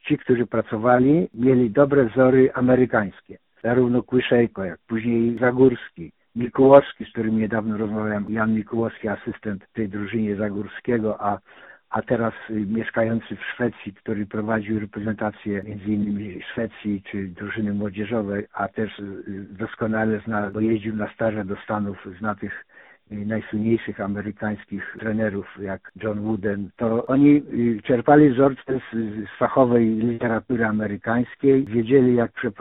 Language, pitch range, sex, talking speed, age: Polish, 110-130 Hz, male, 120 wpm, 60-79